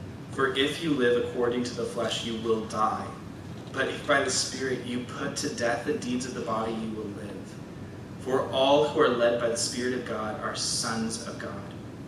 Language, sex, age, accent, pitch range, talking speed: English, male, 20-39, American, 115-140 Hz, 210 wpm